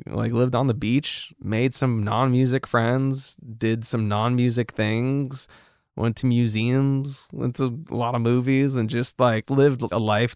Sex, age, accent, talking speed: male, 20-39, American, 160 wpm